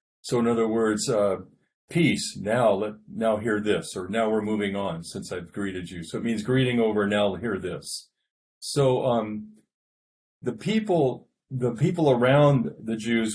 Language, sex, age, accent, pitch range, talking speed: English, male, 40-59, American, 105-125 Hz, 165 wpm